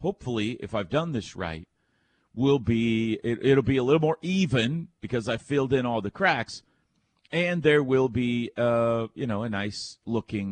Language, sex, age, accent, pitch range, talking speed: English, male, 40-59, American, 105-145 Hz, 185 wpm